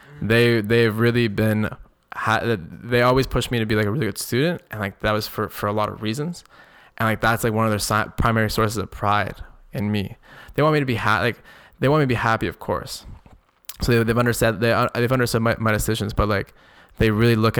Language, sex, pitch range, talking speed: English, male, 105-120 Hz, 240 wpm